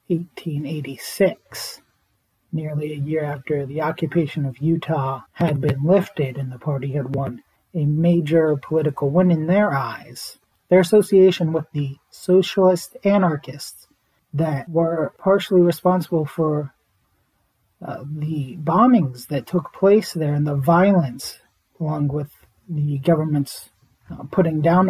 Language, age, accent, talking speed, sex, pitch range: English, 30-49, American, 125 wpm, male, 140-170 Hz